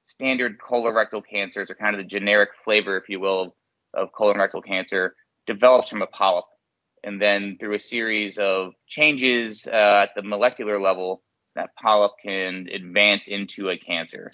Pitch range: 100-110 Hz